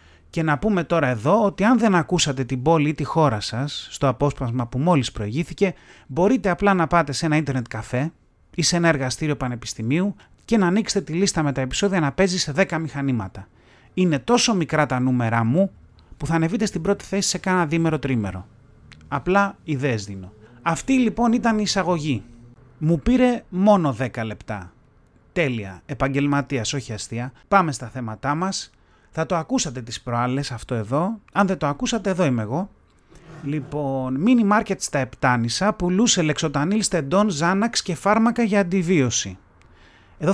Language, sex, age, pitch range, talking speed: Greek, male, 30-49, 125-185 Hz, 165 wpm